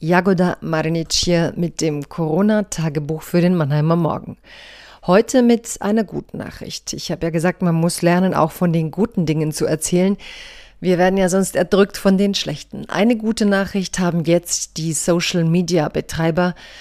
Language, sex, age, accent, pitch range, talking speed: German, female, 40-59, German, 165-190 Hz, 155 wpm